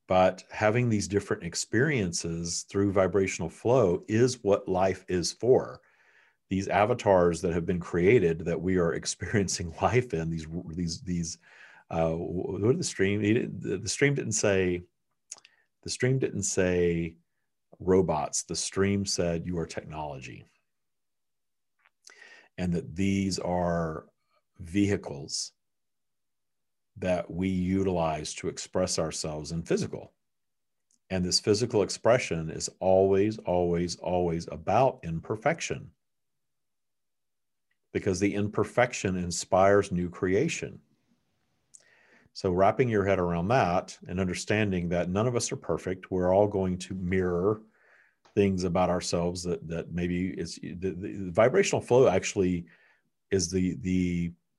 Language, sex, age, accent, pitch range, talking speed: English, male, 50-69, American, 85-100 Hz, 120 wpm